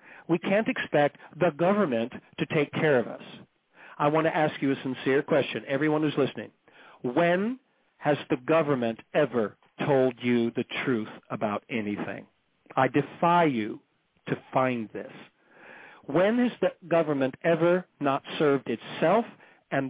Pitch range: 130-160 Hz